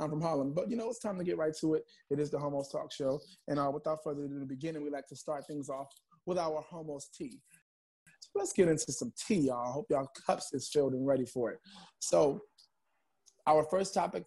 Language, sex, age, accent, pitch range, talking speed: English, male, 20-39, American, 140-190 Hz, 245 wpm